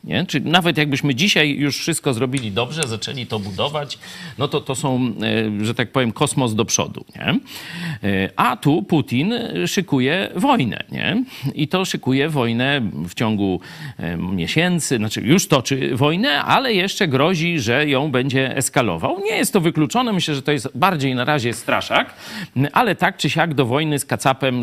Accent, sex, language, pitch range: native, male, Polish, 110-150 Hz